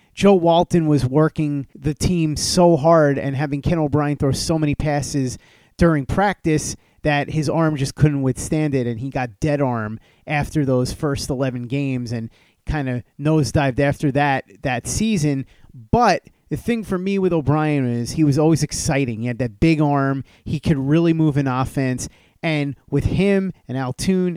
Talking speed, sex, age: 175 wpm, male, 30-49